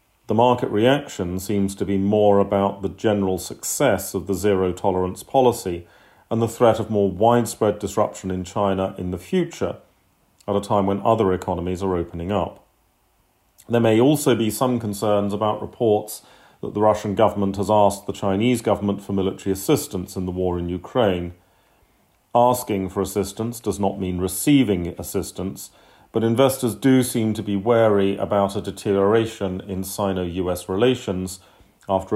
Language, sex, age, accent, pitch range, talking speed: English, male, 40-59, British, 95-105 Hz, 155 wpm